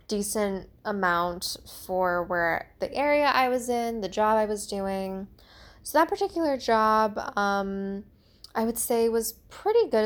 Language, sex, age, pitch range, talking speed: English, female, 10-29, 195-230 Hz, 150 wpm